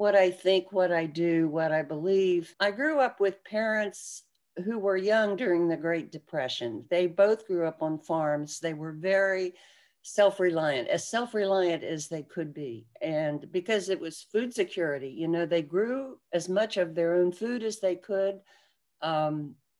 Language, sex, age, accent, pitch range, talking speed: English, female, 60-79, American, 165-200 Hz, 175 wpm